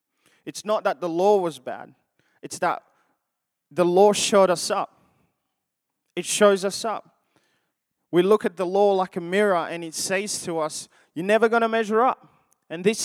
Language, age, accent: English, 20-39, Australian